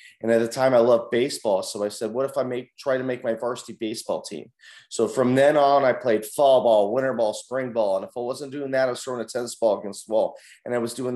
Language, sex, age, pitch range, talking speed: English, male, 30-49, 115-145 Hz, 275 wpm